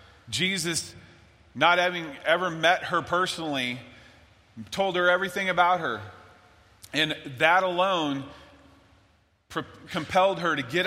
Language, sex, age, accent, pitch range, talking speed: English, male, 40-59, American, 140-185 Hz, 105 wpm